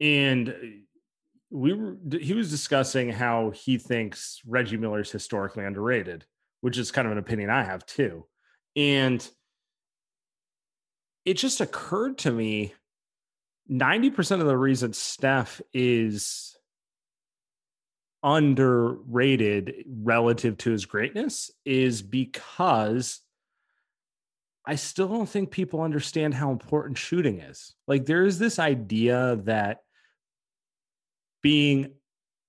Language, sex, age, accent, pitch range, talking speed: English, male, 30-49, American, 110-140 Hz, 110 wpm